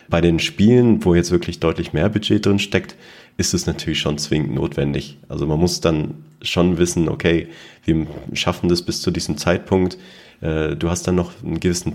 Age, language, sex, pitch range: 30-49, German, male, 80-110 Hz